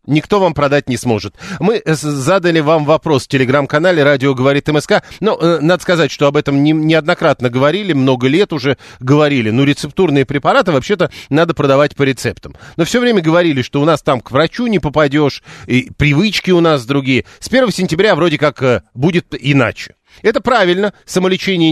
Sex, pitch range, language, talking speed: male, 140-180 Hz, Russian, 165 wpm